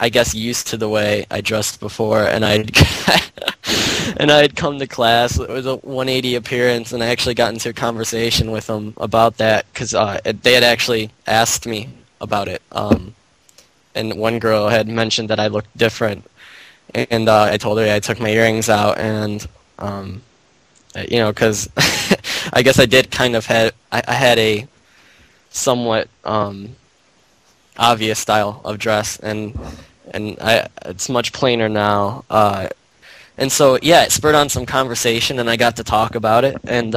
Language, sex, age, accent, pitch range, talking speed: English, male, 10-29, American, 110-120 Hz, 175 wpm